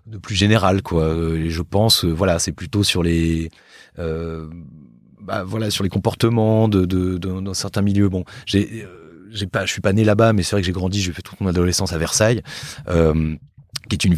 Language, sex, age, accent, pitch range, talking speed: French, male, 30-49, French, 90-115 Hz, 230 wpm